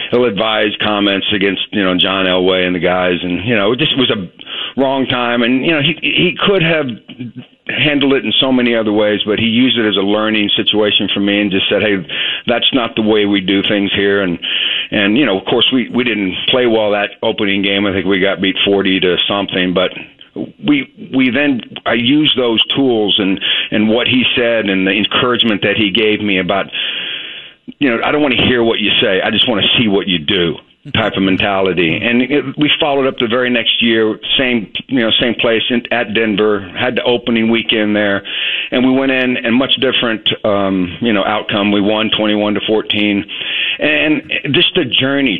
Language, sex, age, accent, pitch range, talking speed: English, male, 50-69, American, 100-125 Hz, 215 wpm